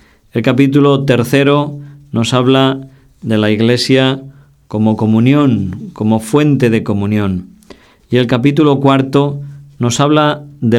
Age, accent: 40-59, Spanish